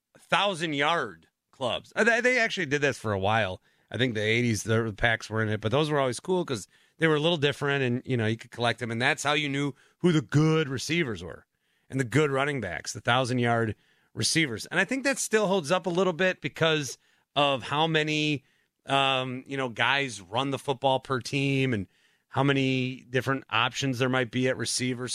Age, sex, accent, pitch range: 30-49, male, American, 115-150 Hz